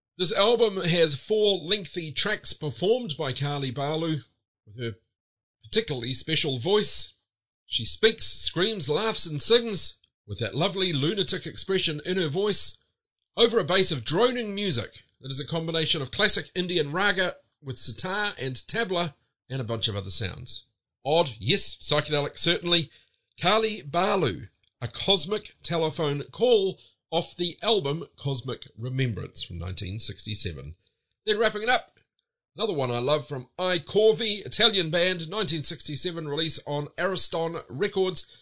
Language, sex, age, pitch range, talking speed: English, male, 40-59, 125-185 Hz, 135 wpm